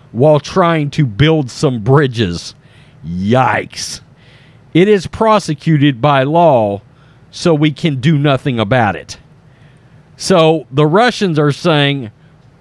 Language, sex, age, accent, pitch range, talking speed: English, male, 40-59, American, 140-185 Hz, 115 wpm